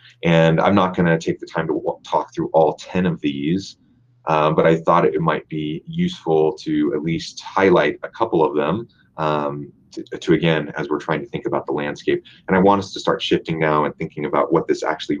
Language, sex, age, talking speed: English, male, 30-49, 220 wpm